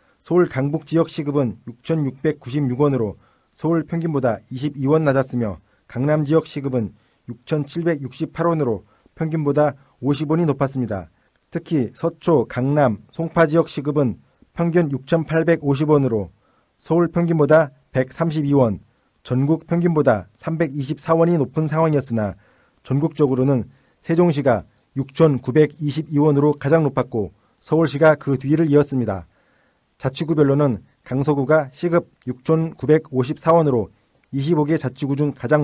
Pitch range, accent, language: 125-160 Hz, native, Korean